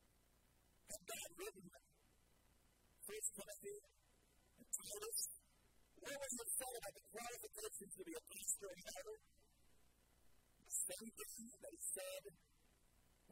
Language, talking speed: English, 110 wpm